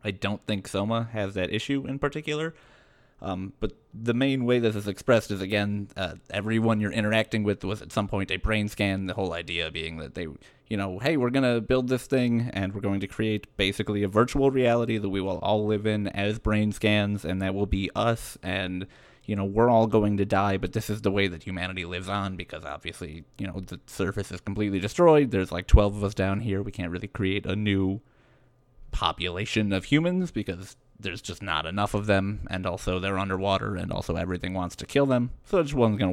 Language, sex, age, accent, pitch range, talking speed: English, male, 30-49, American, 95-115 Hz, 225 wpm